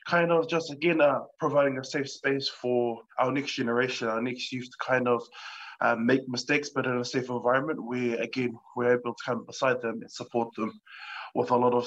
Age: 20-39